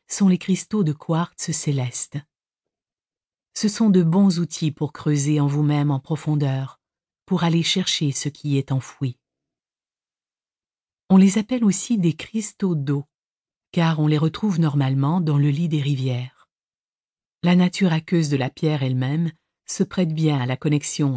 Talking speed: 155 wpm